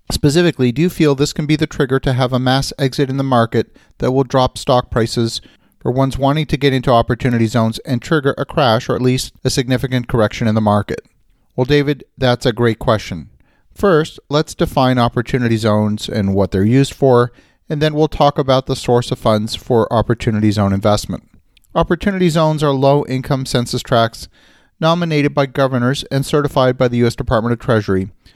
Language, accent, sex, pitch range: English, American, male, 115-140 Hz